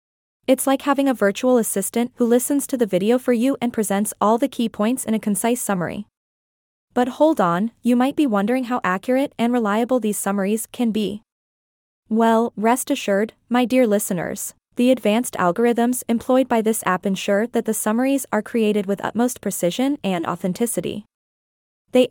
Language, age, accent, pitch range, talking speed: English, 20-39, American, 200-245 Hz, 170 wpm